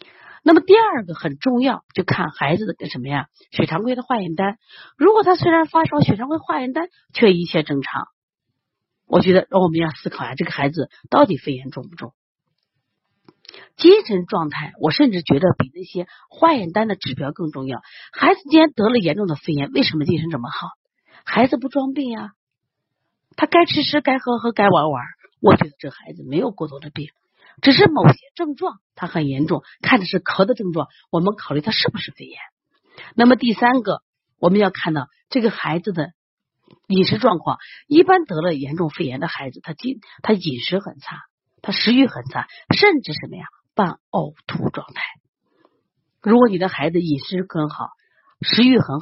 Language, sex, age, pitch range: Chinese, female, 40-59, 150-255 Hz